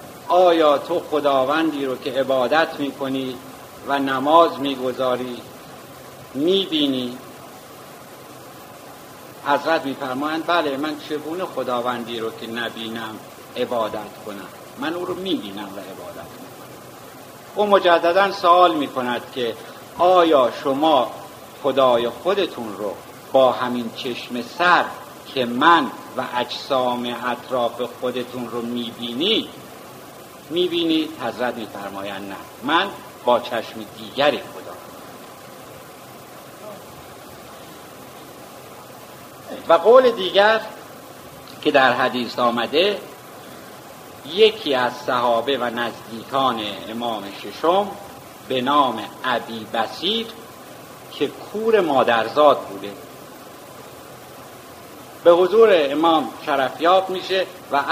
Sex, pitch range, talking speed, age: male, 125-170 Hz, 95 wpm, 50-69